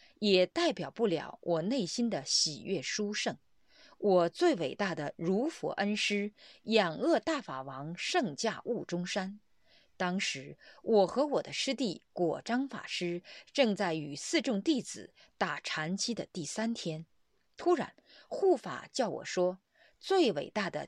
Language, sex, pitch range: Chinese, female, 180-280 Hz